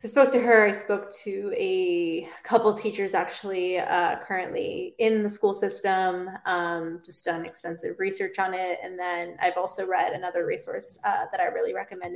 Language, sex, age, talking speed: English, female, 20-39, 180 wpm